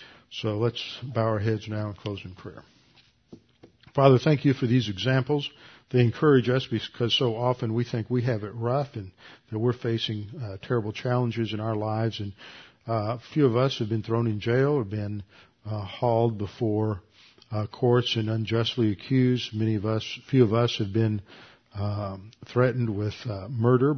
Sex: male